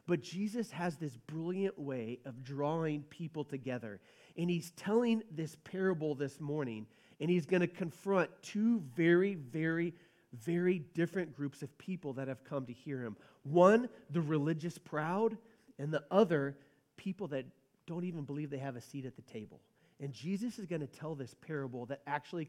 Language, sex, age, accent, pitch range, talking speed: English, male, 40-59, American, 135-180 Hz, 175 wpm